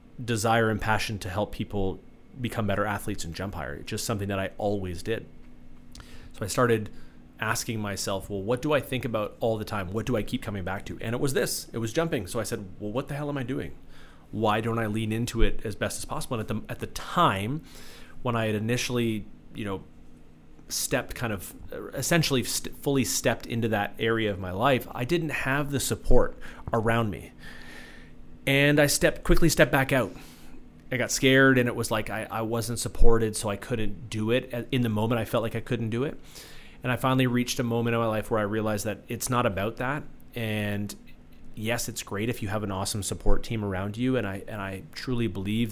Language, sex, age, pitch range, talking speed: English, male, 30-49, 105-125 Hz, 215 wpm